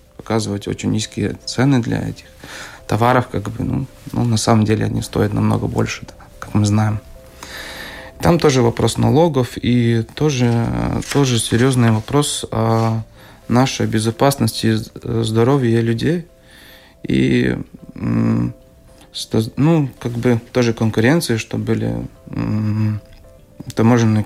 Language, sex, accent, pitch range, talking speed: Russian, male, native, 110-125 Hz, 110 wpm